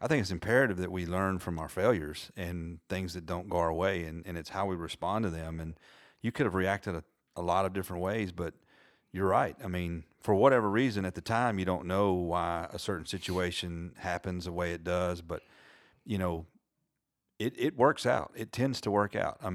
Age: 40-59